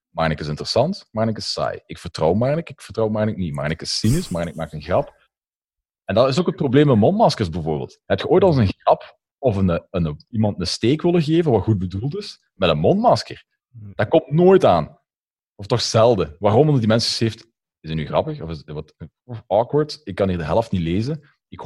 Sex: male